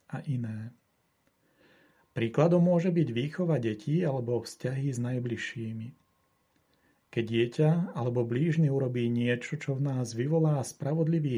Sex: male